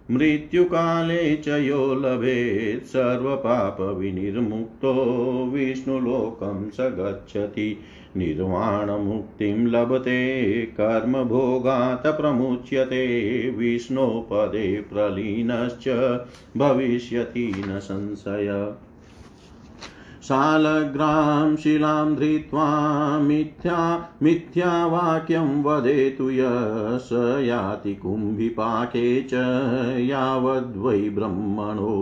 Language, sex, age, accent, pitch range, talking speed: Hindi, male, 50-69, native, 105-135 Hz, 50 wpm